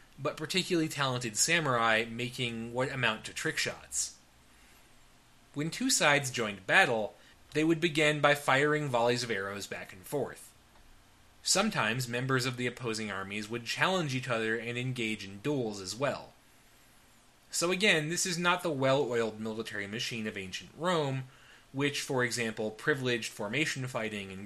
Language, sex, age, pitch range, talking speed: English, male, 20-39, 110-150 Hz, 150 wpm